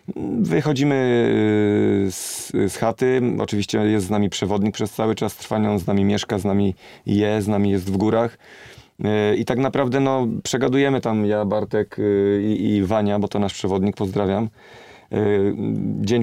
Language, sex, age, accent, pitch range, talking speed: Polish, male, 30-49, native, 105-115 Hz, 150 wpm